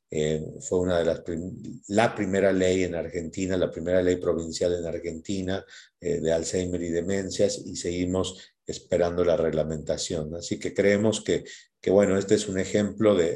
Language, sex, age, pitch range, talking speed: Spanish, male, 50-69, 80-100 Hz, 170 wpm